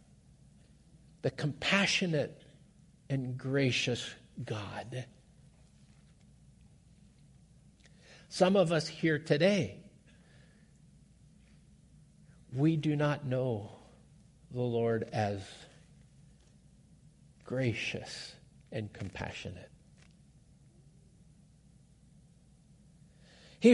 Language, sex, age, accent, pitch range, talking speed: English, male, 50-69, American, 145-210 Hz, 55 wpm